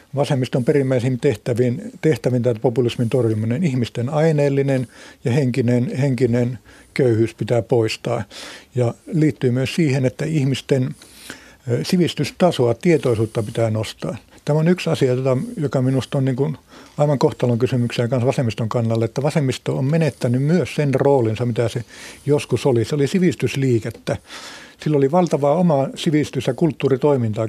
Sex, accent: male, native